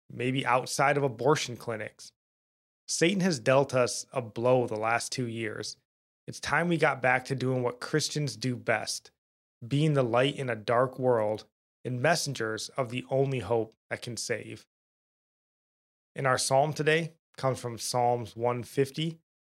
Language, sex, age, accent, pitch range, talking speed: English, male, 20-39, American, 115-140 Hz, 155 wpm